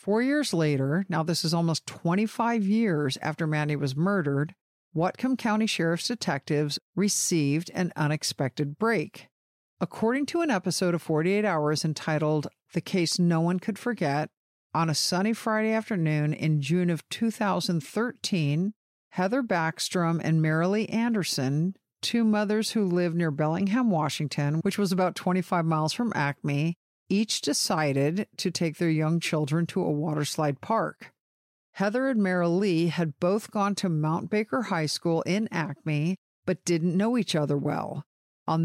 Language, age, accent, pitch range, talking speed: English, 50-69, American, 155-195 Hz, 145 wpm